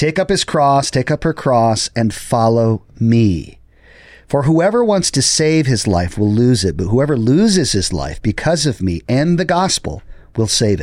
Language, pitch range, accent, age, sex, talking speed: English, 105-145 Hz, American, 40-59, male, 190 wpm